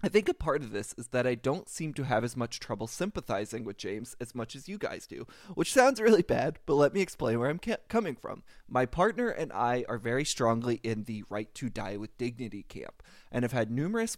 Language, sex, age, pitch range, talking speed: English, male, 20-39, 115-145 Hz, 235 wpm